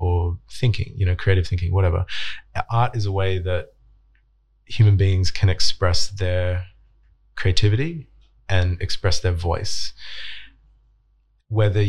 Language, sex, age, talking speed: English, male, 20-39, 115 wpm